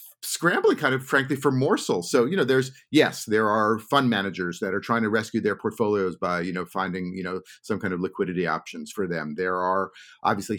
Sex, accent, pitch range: male, American, 95-115 Hz